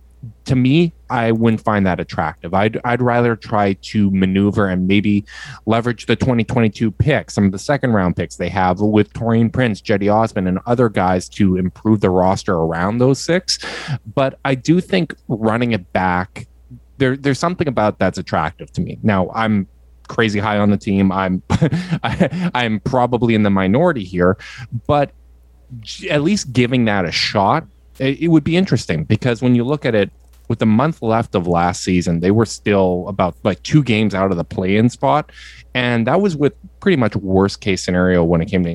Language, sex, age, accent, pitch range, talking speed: English, male, 20-39, American, 95-130 Hz, 185 wpm